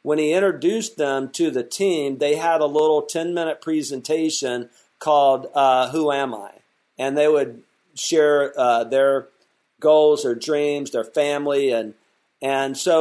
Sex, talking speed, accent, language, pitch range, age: male, 150 wpm, American, English, 130-160 Hz, 50-69